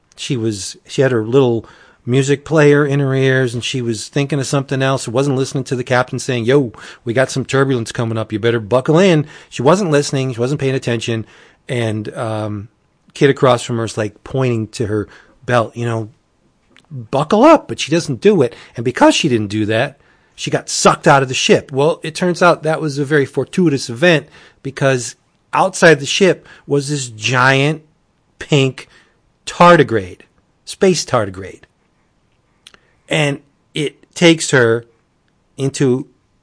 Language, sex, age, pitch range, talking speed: English, male, 40-59, 115-145 Hz, 170 wpm